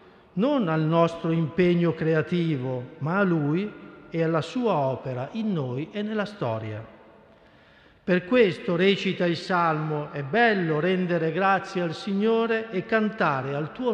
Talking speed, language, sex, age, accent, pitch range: 140 wpm, Italian, male, 50-69, native, 160-205 Hz